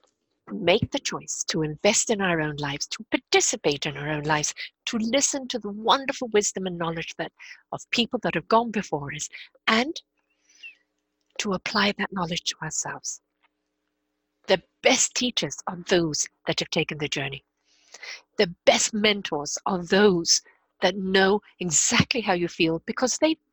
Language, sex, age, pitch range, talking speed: English, female, 50-69, 155-230 Hz, 155 wpm